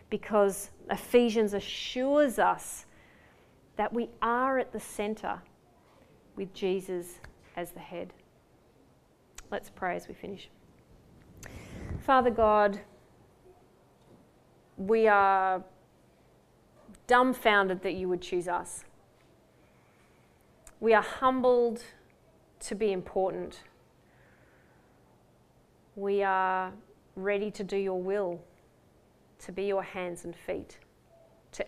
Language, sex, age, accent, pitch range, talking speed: English, female, 30-49, Australian, 185-215 Hz, 95 wpm